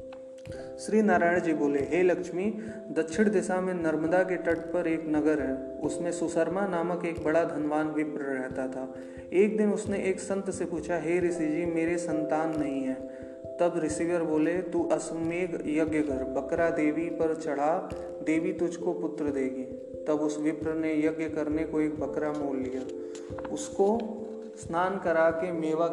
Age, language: 20-39, Hindi